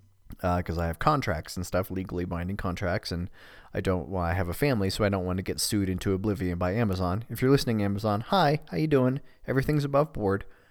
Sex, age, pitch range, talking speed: male, 30-49, 95-120 Hz, 225 wpm